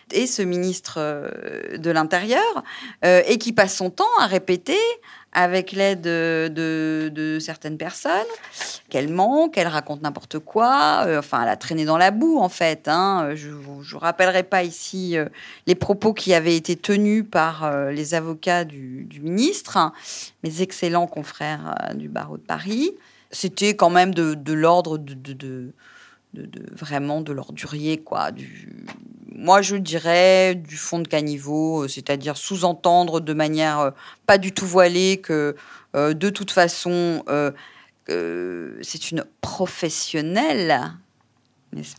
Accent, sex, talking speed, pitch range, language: French, female, 155 wpm, 150-190 Hz, French